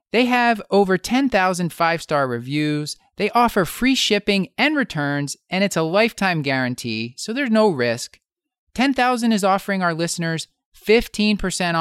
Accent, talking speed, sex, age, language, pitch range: American, 135 wpm, male, 30-49, English, 135-185 Hz